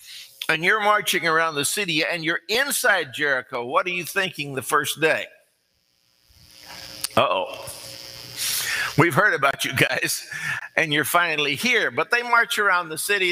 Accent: American